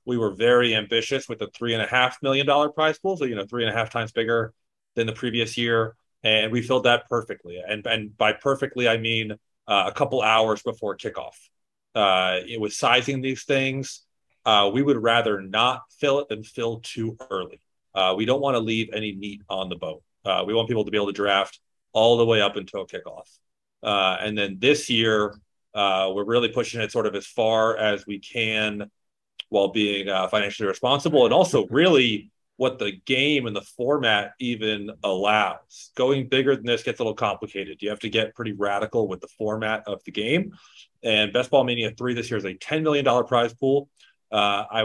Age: 30-49